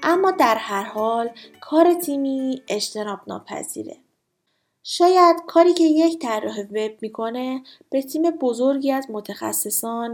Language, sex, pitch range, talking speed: Persian, female, 215-280 Hz, 120 wpm